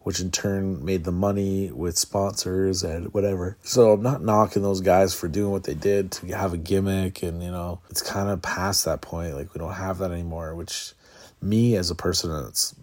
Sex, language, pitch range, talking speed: male, English, 85-100 Hz, 215 wpm